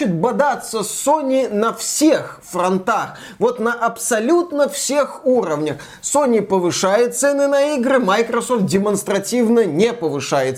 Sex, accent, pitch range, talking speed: male, native, 175-230 Hz, 115 wpm